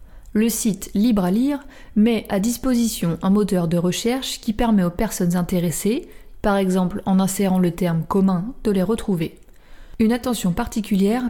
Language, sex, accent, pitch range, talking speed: French, female, French, 185-225 Hz, 160 wpm